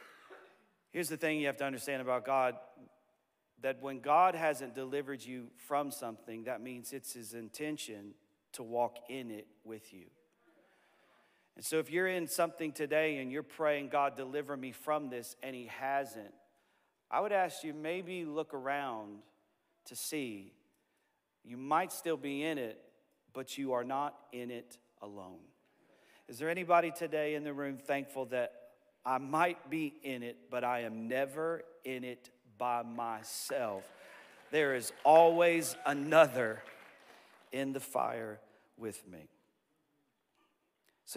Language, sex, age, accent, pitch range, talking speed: English, male, 40-59, American, 125-155 Hz, 145 wpm